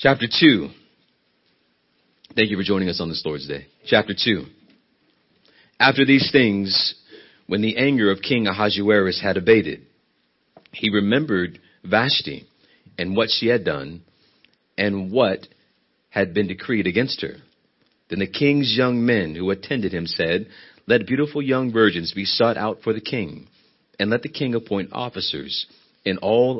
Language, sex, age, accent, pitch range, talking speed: English, male, 40-59, American, 95-120 Hz, 150 wpm